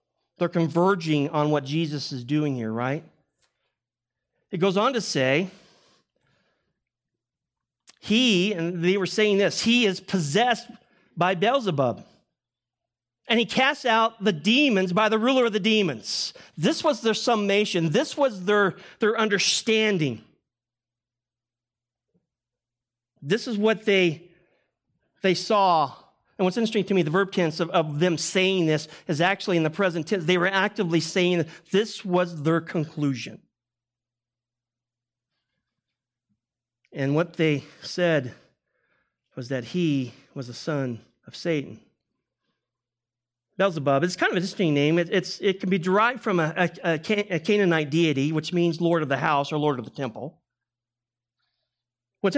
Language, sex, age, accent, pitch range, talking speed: English, male, 40-59, American, 130-195 Hz, 140 wpm